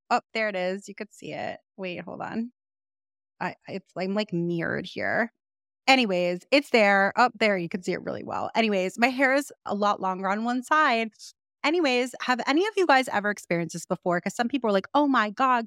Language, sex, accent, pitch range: English, female, American, 185-245 Hz